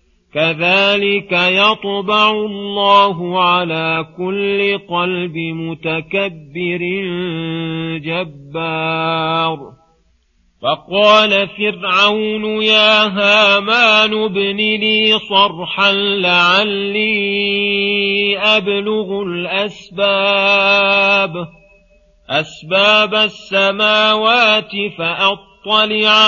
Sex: male